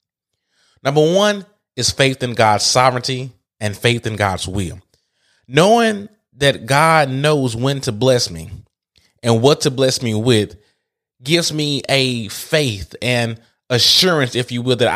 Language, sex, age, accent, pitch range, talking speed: English, male, 20-39, American, 115-150 Hz, 145 wpm